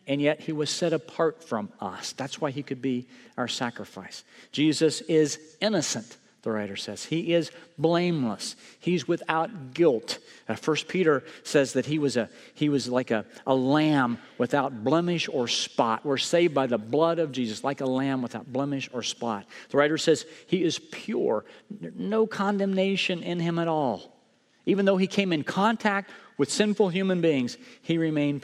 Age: 50-69